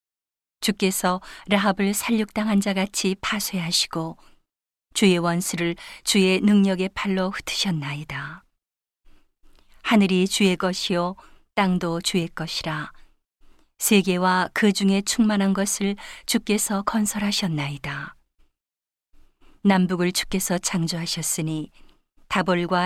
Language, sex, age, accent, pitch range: Korean, female, 40-59, native, 175-205 Hz